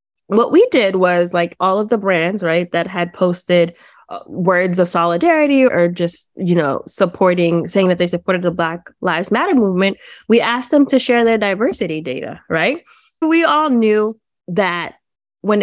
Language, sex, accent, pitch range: English, female, American, 170-200 Hz